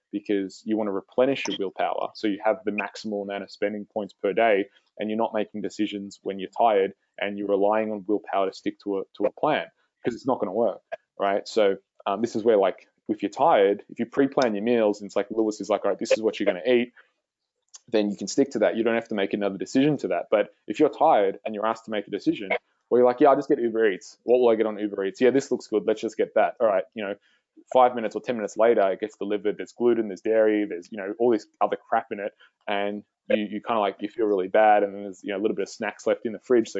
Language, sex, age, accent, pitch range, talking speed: English, male, 20-39, Australian, 100-120 Hz, 285 wpm